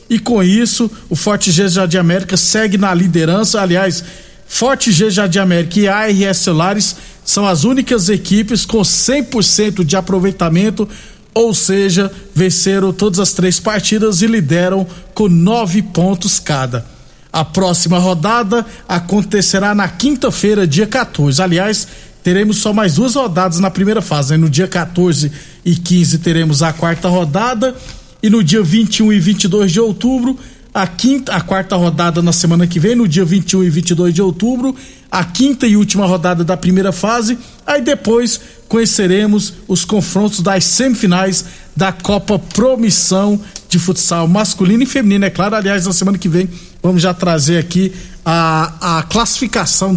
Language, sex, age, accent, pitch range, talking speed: Portuguese, male, 50-69, Brazilian, 175-215 Hz, 155 wpm